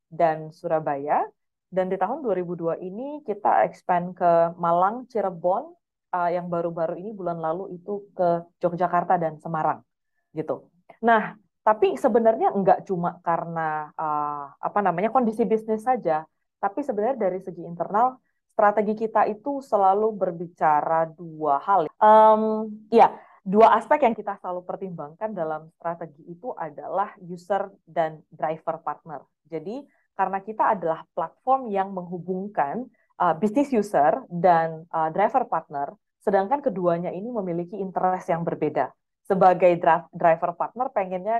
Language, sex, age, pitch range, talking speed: Indonesian, female, 30-49, 170-220 Hz, 130 wpm